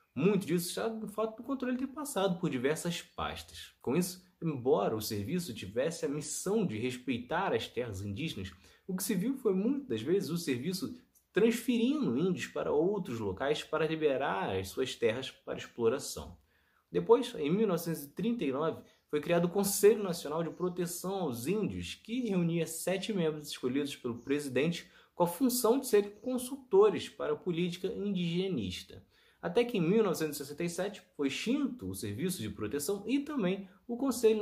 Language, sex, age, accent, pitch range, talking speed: Portuguese, male, 20-39, Brazilian, 145-220 Hz, 155 wpm